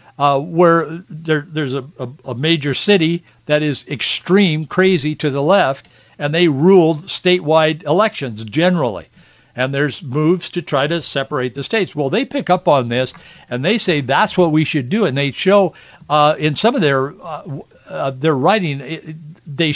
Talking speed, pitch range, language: 180 wpm, 140-190 Hz, English